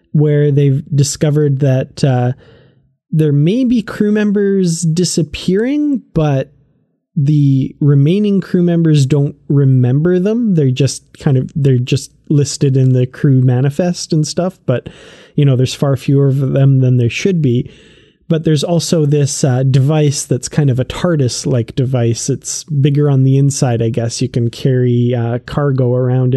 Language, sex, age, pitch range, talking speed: English, male, 20-39, 130-155 Hz, 160 wpm